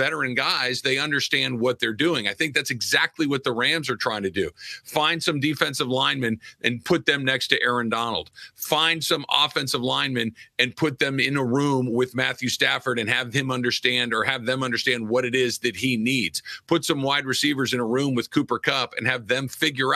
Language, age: English, 40-59